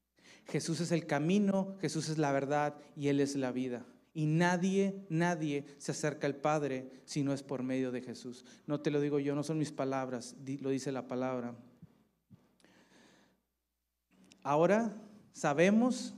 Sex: male